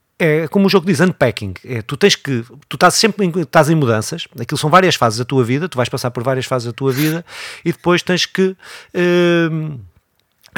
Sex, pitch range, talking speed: male, 125-165 Hz, 205 wpm